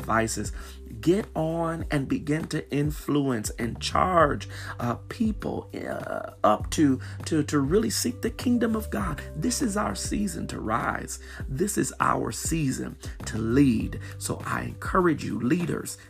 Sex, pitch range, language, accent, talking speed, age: male, 100-140 Hz, English, American, 145 wpm, 40-59